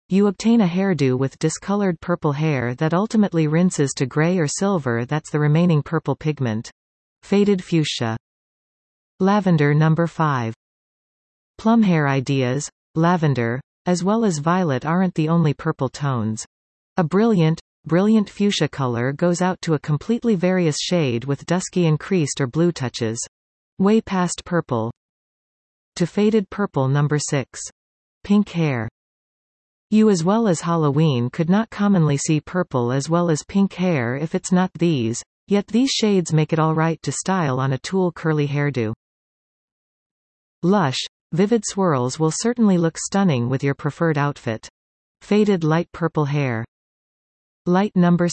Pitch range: 135-185 Hz